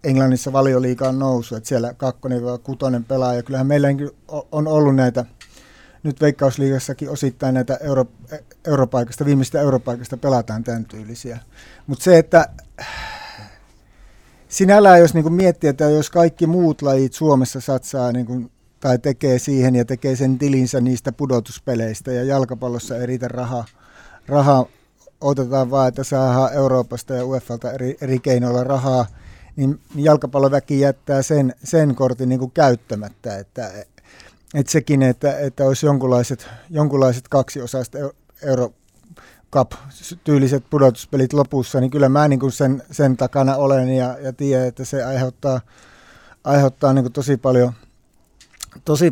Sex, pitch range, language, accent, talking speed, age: male, 125-145 Hz, Finnish, native, 125 wpm, 60-79